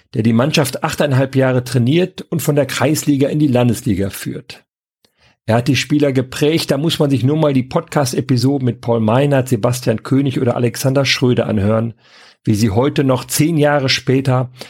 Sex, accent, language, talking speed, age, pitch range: male, German, German, 175 wpm, 50-69, 115-145 Hz